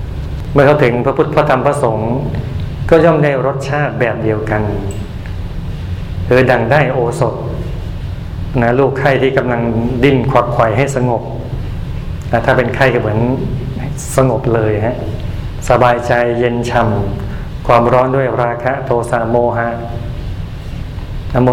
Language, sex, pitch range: Thai, male, 110-130 Hz